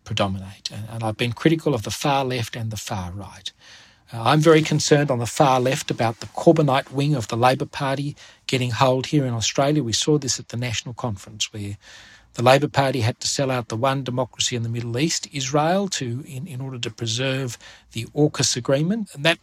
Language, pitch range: English, 110-135 Hz